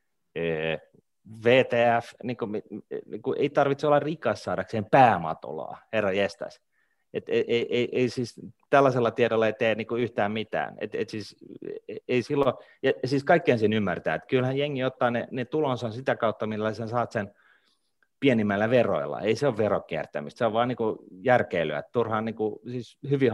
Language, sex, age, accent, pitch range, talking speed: Finnish, male, 30-49, native, 100-125 Hz, 155 wpm